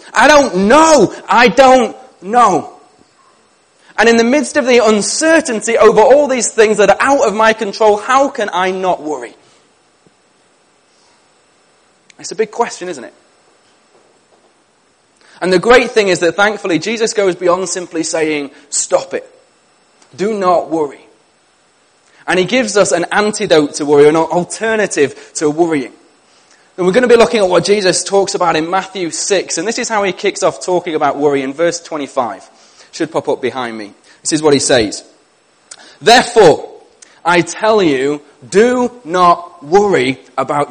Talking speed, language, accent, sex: 160 wpm, English, British, male